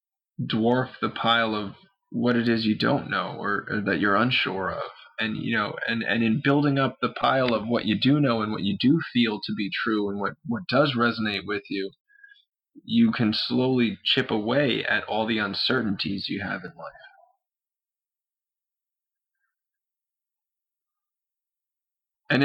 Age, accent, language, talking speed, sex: 20-39, American, English, 160 wpm, male